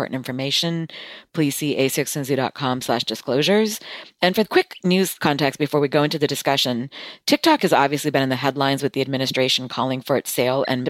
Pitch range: 135-165 Hz